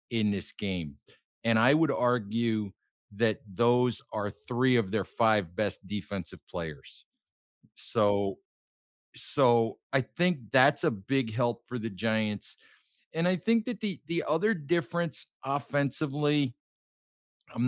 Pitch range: 110-135 Hz